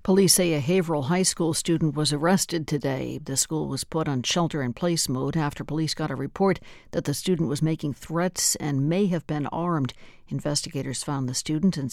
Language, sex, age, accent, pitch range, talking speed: English, female, 60-79, American, 140-175 Hz, 190 wpm